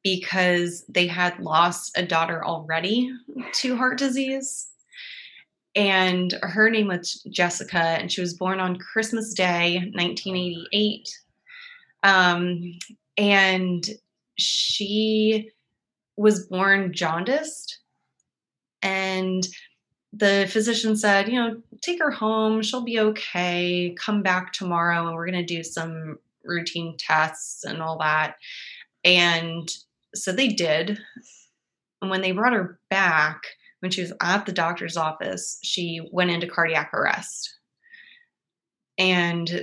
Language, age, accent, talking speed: English, 20-39, American, 120 wpm